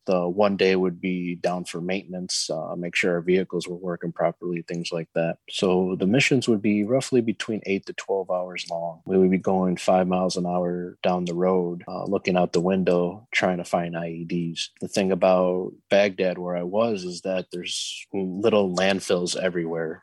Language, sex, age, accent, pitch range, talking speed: English, male, 20-39, American, 85-95 Hz, 190 wpm